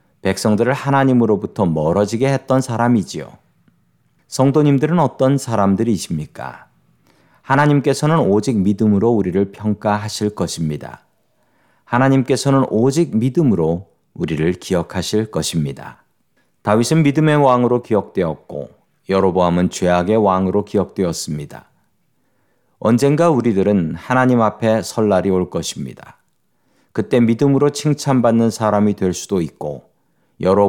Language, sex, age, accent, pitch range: Korean, male, 40-59, native, 95-130 Hz